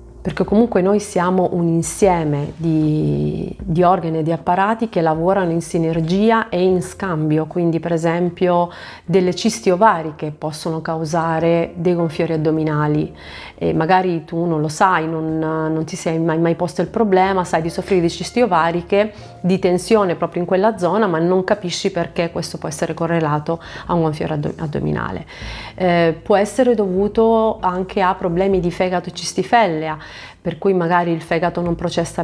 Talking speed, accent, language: 160 wpm, native, Italian